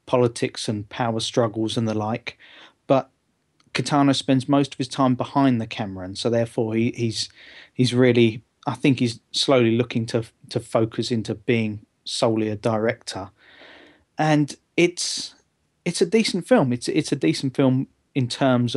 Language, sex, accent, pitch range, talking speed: English, male, British, 110-130 Hz, 160 wpm